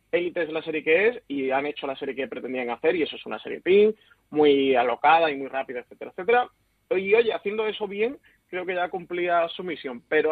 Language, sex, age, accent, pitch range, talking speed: Spanish, male, 30-49, Spanish, 140-190 Hz, 225 wpm